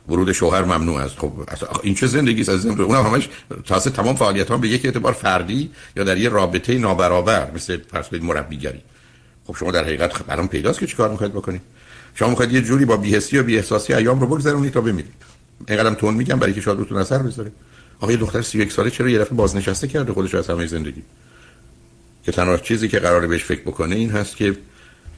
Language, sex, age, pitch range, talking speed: Persian, male, 60-79, 90-115 Hz, 205 wpm